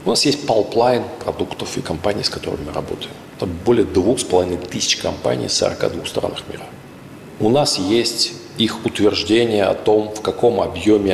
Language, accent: Russian, native